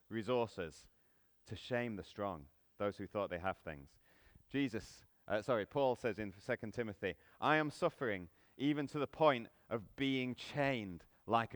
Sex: male